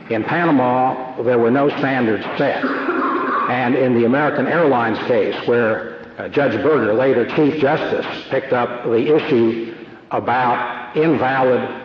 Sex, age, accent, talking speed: male, 60-79, American, 130 wpm